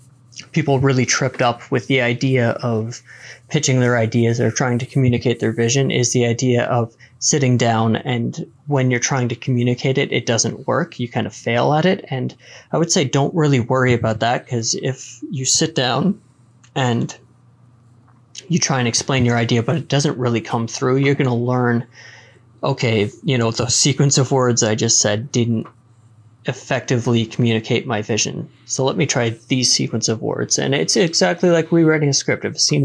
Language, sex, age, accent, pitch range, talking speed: English, male, 20-39, American, 115-135 Hz, 190 wpm